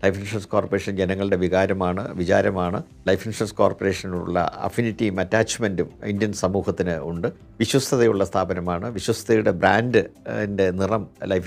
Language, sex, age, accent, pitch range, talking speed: Malayalam, male, 50-69, native, 95-115 Hz, 105 wpm